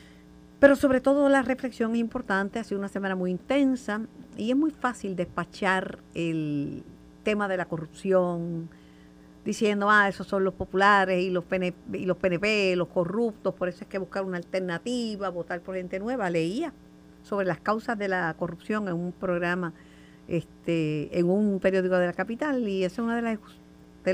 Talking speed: 180 wpm